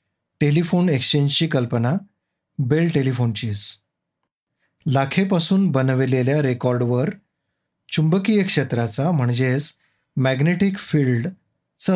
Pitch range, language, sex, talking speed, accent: 125-160 Hz, Marathi, male, 75 wpm, native